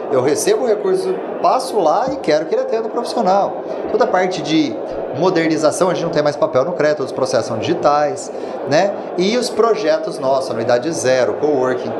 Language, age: Portuguese, 30-49